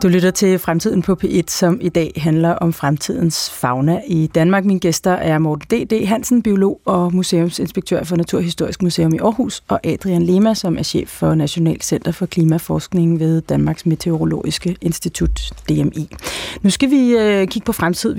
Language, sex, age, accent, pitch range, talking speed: Danish, female, 30-49, native, 170-210 Hz, 170 wpm